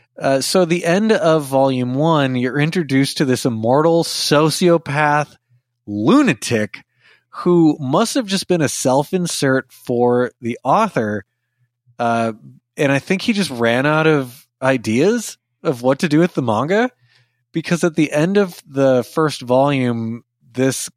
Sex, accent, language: male, American, English